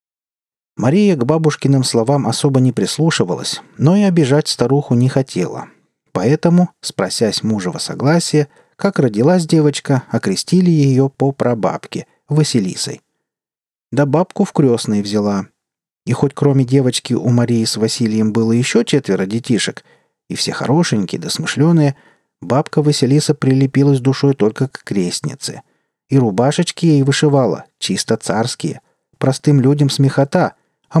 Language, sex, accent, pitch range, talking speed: Russian, male, native, 120-155 Hz, 125 wpm